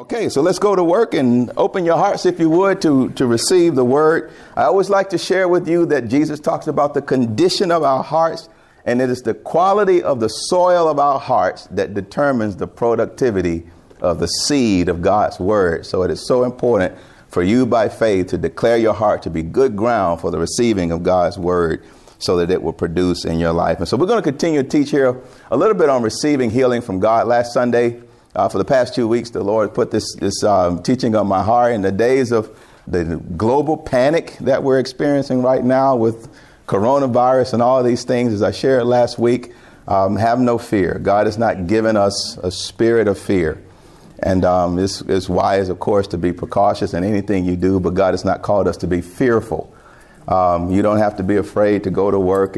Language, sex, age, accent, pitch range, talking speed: English, male, 50-69, American, 95-130 Hz, 215 wpm